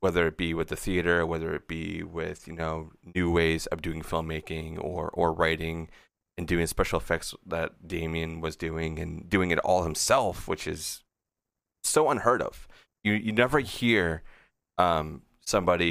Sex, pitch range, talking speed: male, 80-100 Hz, 165 wpm